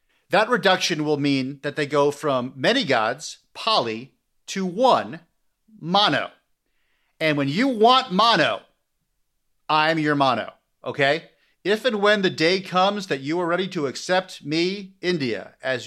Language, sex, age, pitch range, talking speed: English, male, 50-69, 140-195 Hz, 150 wpm